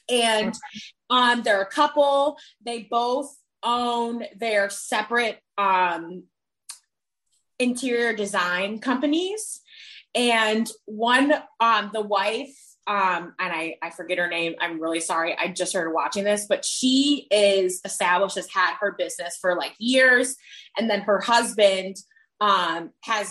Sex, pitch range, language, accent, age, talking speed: female, 195-250 Hz, English, American, 20-39, 130 wpm